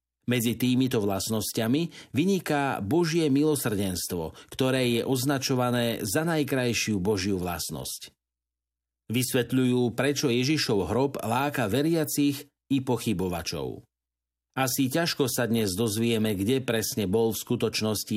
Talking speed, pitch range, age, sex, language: 100 wpm, 110-140 Hz, 50-69, male, Slovak